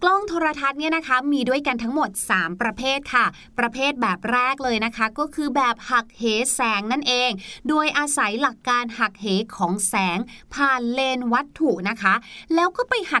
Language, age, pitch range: Thai, 30-49, 210-295 Hz